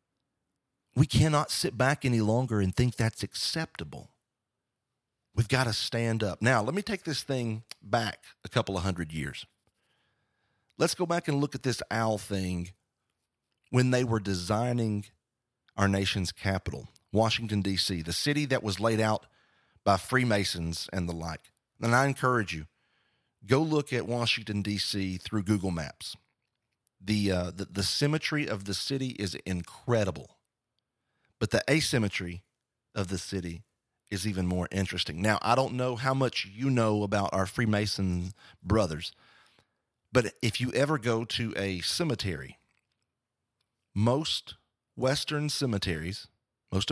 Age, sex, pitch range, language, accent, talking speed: 40-59, male, 95-125 Hz, English, American, 145 wpm